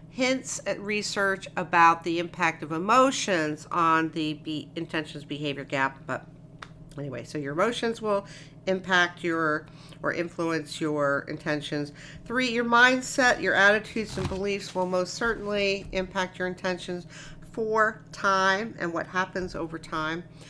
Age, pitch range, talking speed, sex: 50-69, 155-210 Hz, 130 wpm, female